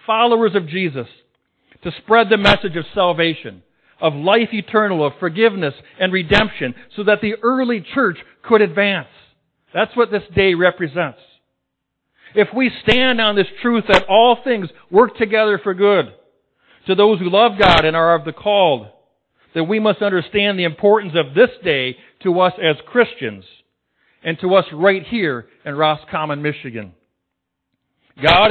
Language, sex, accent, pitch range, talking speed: English, male, American, 155-210 Hz, 155 wpm